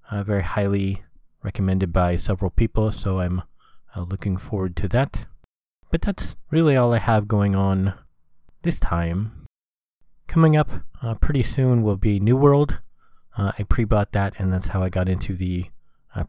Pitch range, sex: 90-110 Hz, male